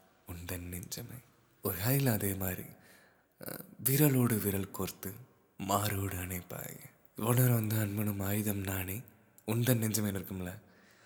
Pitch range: 95-125 Hz